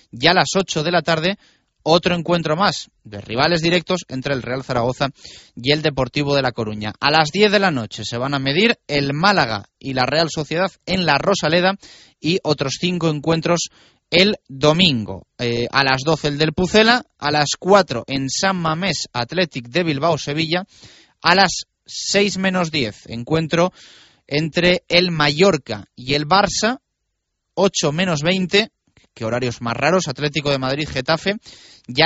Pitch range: 135-175 Hz